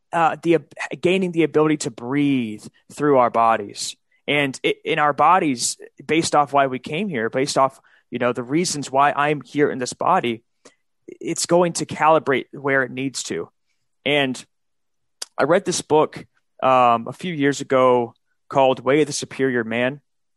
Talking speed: 170 wpm